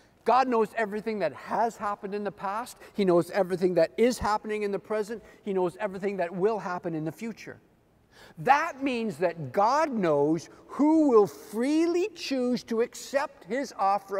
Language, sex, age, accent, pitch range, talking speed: English, male, 50-69, American, 185-260 Hz, 170 wpm